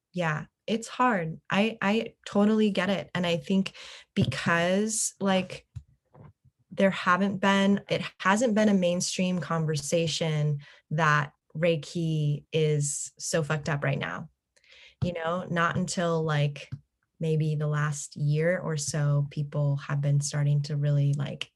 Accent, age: American, 20-39